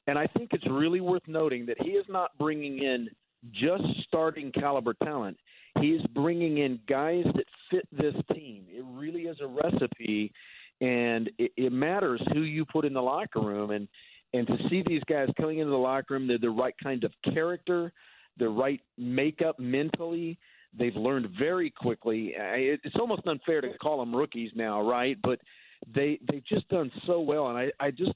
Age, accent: 50-69, American